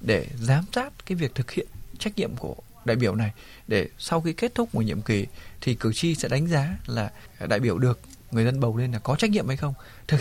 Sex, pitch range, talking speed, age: male, 115-165 Hz, 245 wpm, 20-39